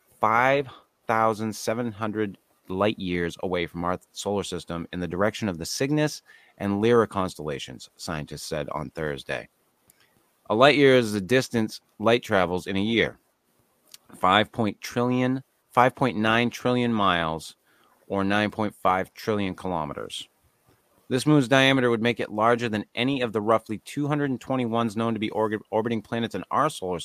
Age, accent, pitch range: 30-49, American, 90-120 Hz